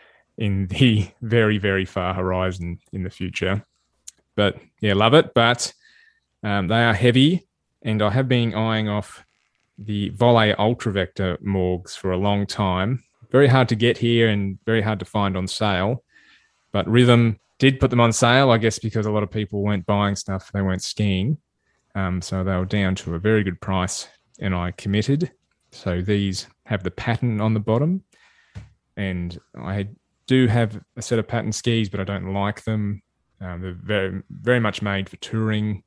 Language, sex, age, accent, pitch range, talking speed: English, male, 20-39, Australian, 90-110 Hz, 180 wpm